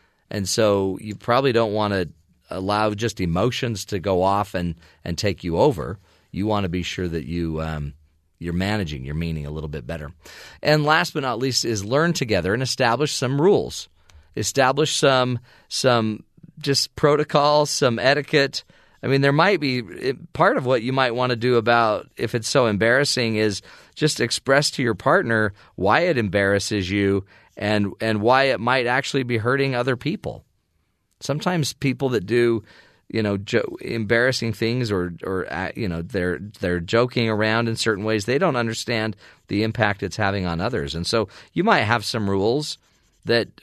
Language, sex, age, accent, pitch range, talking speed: English, male, 40-59, American, 95-130 Hz, 180 wpm